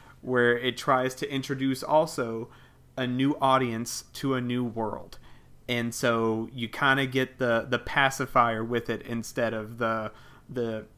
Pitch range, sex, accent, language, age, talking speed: 115-135 Hz, male, American, English, 30-49, 150 wpm